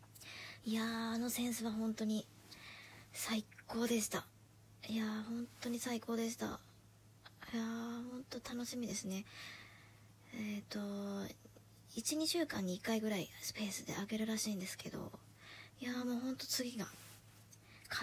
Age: 20-39